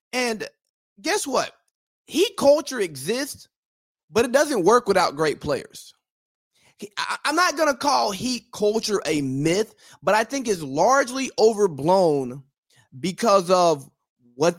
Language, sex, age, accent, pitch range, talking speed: English, male, 30-49, American, 160-230 Hz, 125 wpm